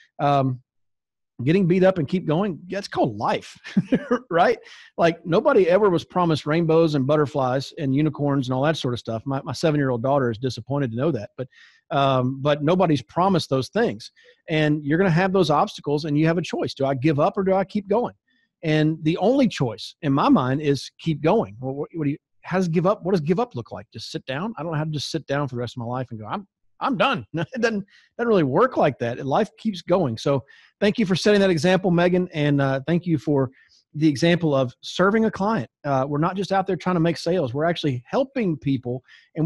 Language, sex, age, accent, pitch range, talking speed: English, male, 40-59, American, 135-190 Hz, 235 wpm